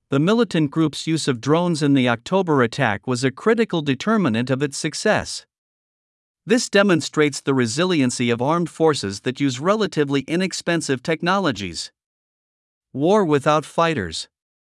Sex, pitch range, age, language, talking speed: male, 130-175 Hz, 50-69, Vietnamese, 130 wpm